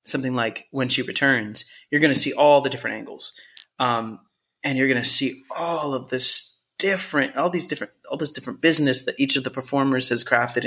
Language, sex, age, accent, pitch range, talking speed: English, male, 20-39, American, 120-140 Hz, 210 wpm